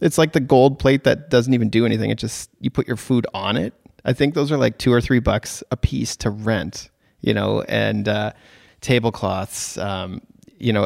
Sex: male